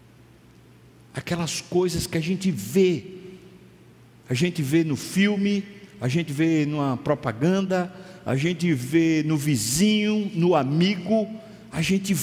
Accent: Brazilian